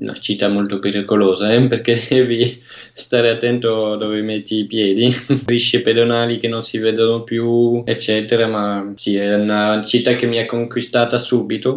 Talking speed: 160 wpm